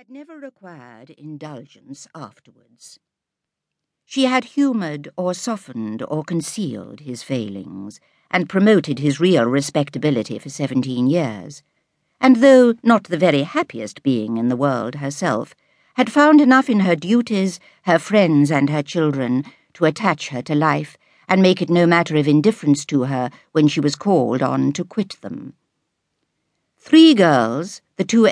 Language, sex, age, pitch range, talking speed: English, female, 60-79, 145-215 Hz, 145 wpm